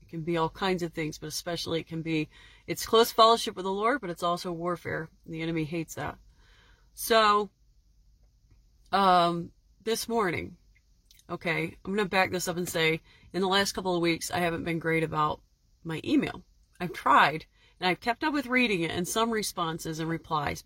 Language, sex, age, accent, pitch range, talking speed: English, female, 30-49, American, 170-220 Hz, 185 wpm